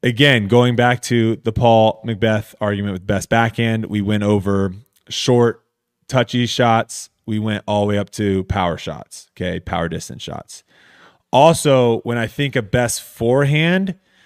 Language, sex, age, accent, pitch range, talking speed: English, male, 30-49, American, 110-130 Hz, 155 wpm